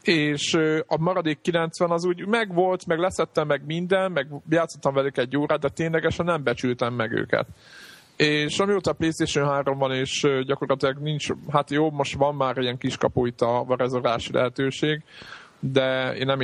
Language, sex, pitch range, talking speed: Hungarian, male, 130-160 Hz, 170 wpm